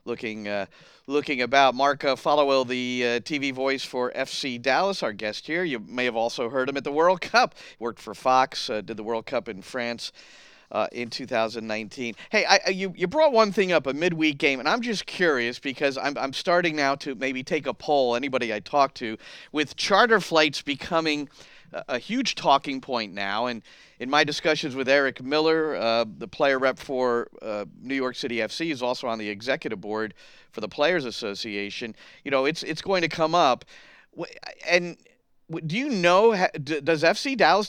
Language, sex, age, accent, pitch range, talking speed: English, male, 40-59, American, 125-165 Hz, 190 wpm